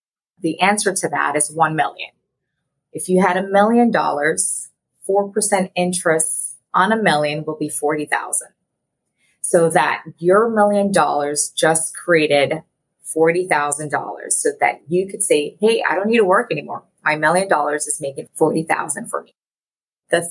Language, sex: English, female